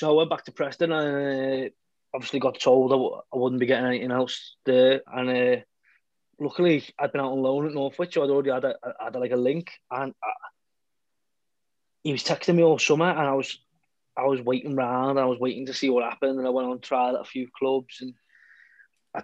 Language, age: English, 20-39